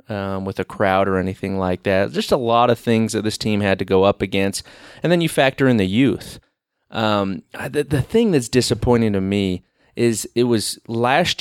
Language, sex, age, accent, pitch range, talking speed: English, male, 30-49, American, 100-130 Hz, 210 wpm